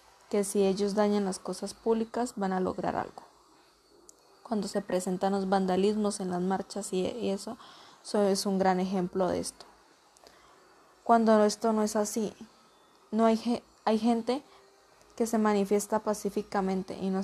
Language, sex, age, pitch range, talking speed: Spanish, female, 20-39, 190-215 Hz, 155 wpm